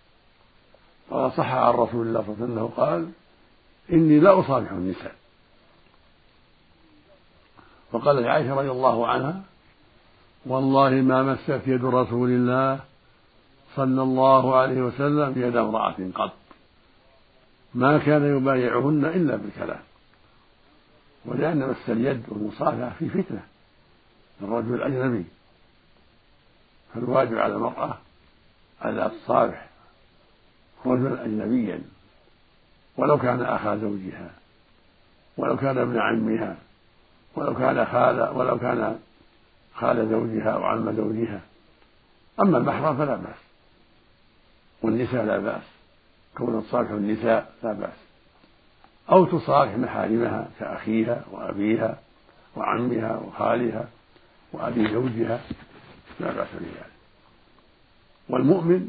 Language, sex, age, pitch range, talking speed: Arabic, male, 60-79, 110-135 Hz, 95 wpm